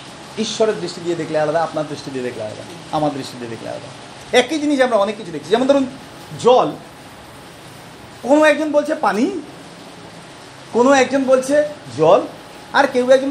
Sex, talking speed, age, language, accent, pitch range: male, 160 wpm, 50-69, Bengali, native, 185-295 Hz